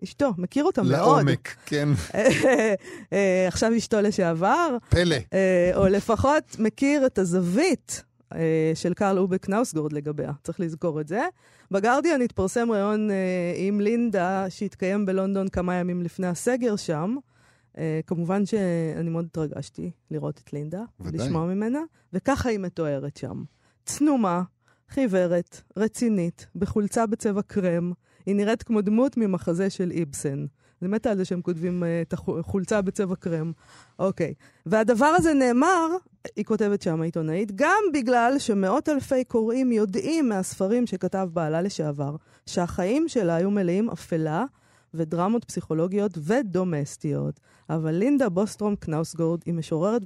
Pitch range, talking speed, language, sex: 165-220 Hz, 125 wpm, Hebrew, female